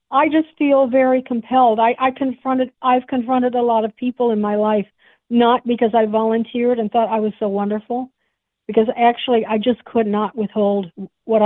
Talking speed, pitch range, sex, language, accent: 195 wpm, 205-240 Hz, female, English, American